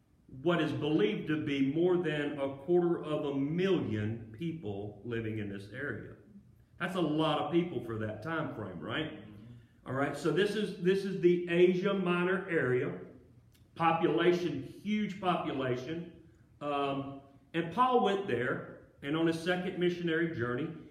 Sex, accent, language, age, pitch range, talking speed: male, American, English, 40-59, 140-185 Hz, 150 wpm